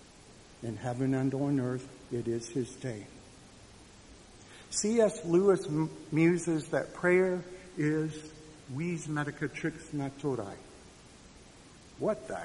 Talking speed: 100 wpm